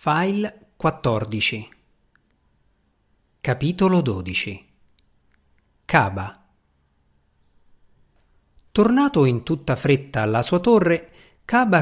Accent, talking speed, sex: native, 65 wpm, male